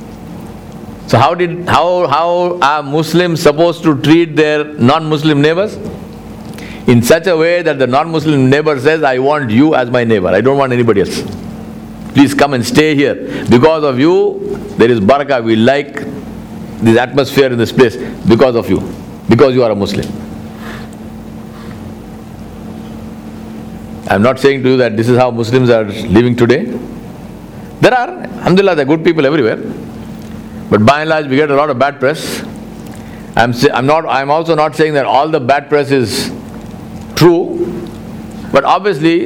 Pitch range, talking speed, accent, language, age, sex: 130-155 Hz, 165 wpm, Indian, English, 50-69, male